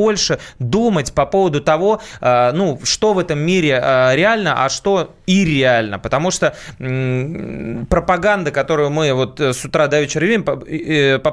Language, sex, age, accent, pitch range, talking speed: Russian, male, 20-39, native, 140-185 Hz, 140 wpm